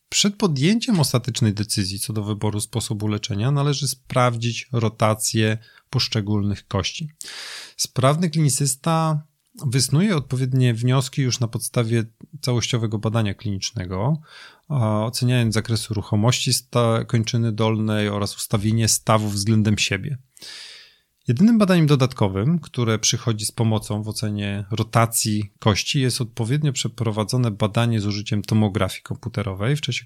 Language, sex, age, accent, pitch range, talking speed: Polish, male, 30-49, native, 110-135 Hz, 110 wpm